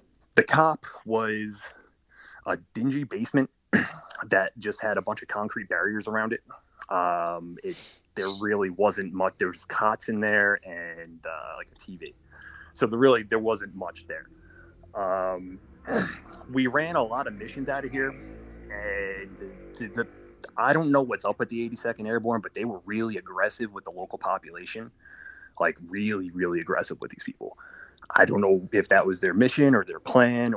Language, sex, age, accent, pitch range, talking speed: English, male, 30-49, American, 100-135 Hz, 175 wpm